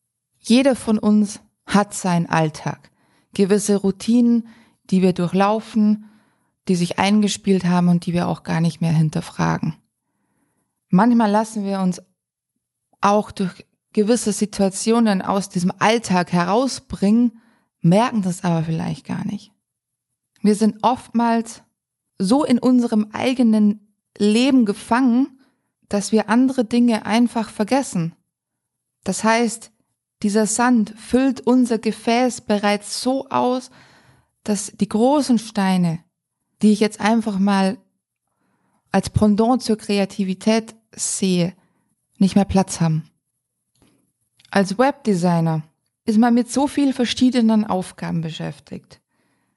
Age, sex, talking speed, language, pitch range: 20-39, female, 115 wpm, German, 180-230 Hz